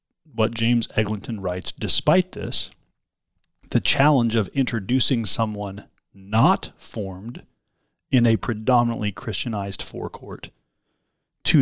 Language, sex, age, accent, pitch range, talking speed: English, male, 30-49, American, 105-135 Hz, 100 wpm